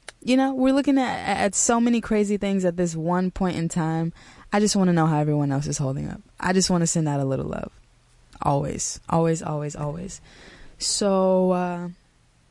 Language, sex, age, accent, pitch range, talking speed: English, female, 20-39, American, 155-180 Hz, 200 wpm